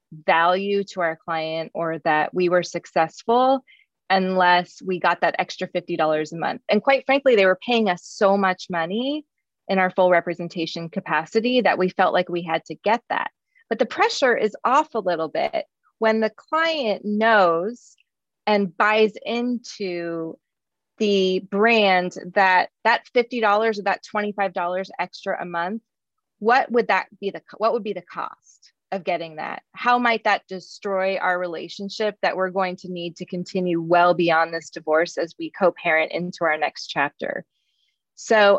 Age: 20-39